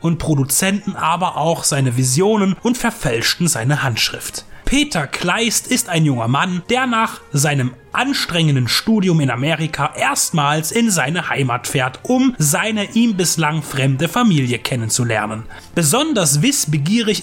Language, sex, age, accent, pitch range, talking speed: German, male, 30-49, German, 150-215 Hz, 130 wpm